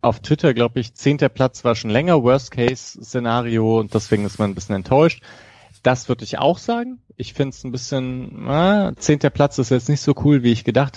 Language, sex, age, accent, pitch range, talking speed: German, male, 30-49, German, 105-130 Hz, 210 wpm